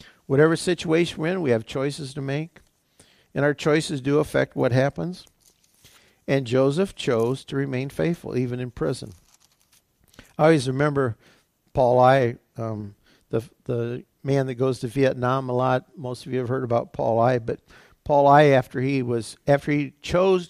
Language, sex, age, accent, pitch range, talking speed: English, male, 50-69, American, 125-160 Hz, 165 wpm